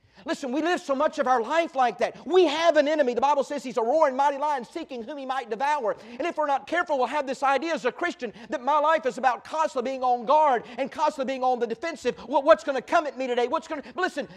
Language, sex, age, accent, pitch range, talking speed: English, male, 50-69, American, 240-310 Hz, 270 wpm